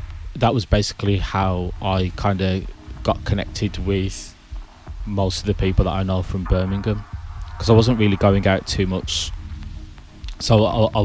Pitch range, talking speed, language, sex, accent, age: 85-100 Hz, 165 wpm, English, male, British, 20-39